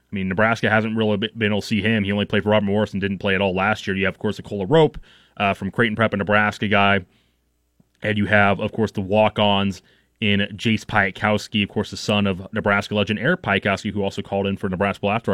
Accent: American